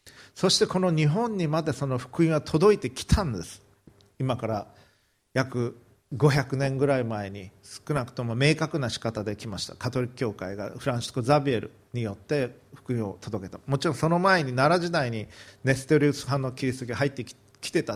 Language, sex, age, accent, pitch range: Japanese, male, 40-59, native, 110-150 Hz